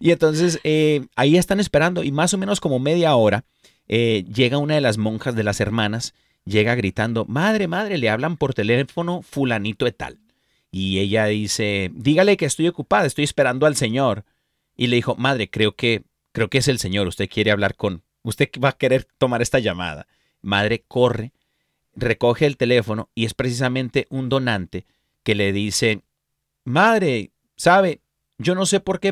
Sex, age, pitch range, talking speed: male, 40-59, 110-150 Hz, 175 wpm